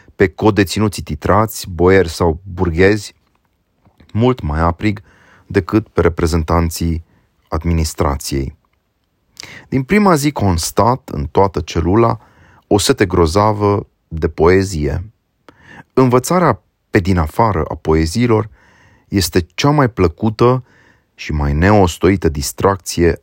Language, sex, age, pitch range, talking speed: Romanian, male, 30-49, 80-100 Hz, 100 wpm